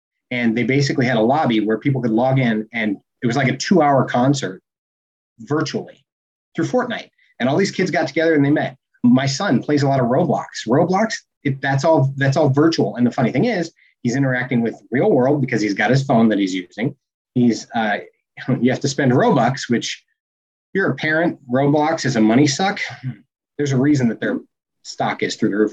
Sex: male